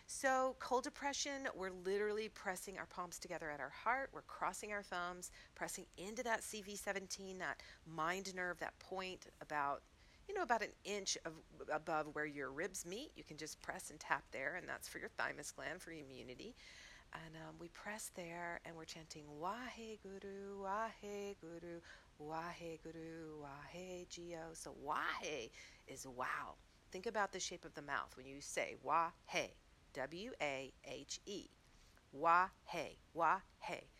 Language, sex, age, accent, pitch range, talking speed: English, female, 50-69, American, 160-205 Hz, 170 wpm